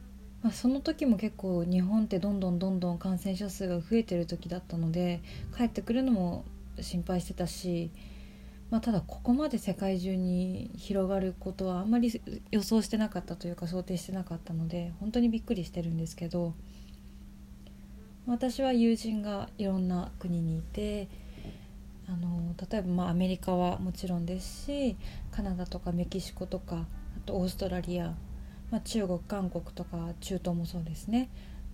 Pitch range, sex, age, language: 175-205 Hz, female, 20-39, Japanese